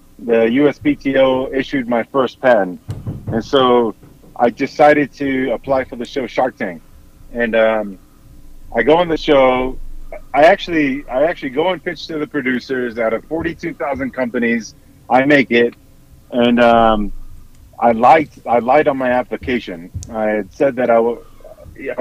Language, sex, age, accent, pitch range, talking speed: English, male, 30-49, American, 120-150 Hz, 155 wpm